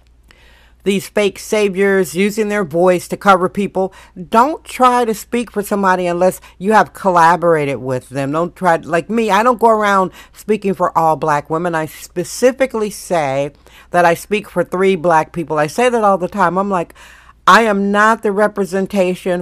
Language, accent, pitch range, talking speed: English, American, 165-215 Hz, 175 wpm